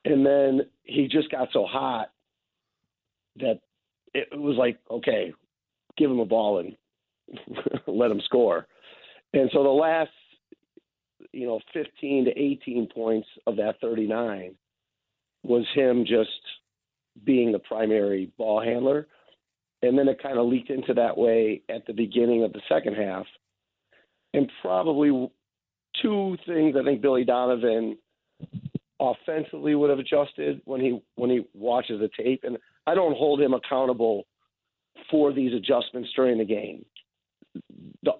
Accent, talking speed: American, 140 wpm